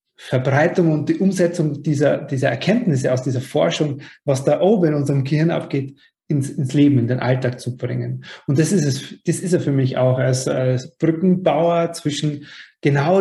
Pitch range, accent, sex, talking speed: 130-165 Hz, German, male, 180 wpm